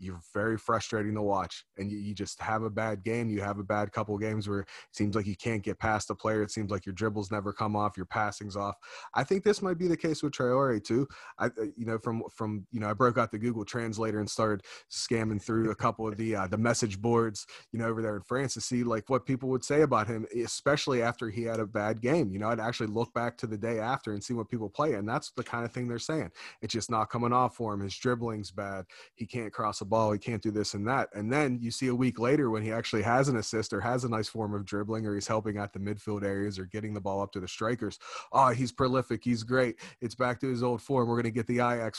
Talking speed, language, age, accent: 275 wpm, English, 30-49, American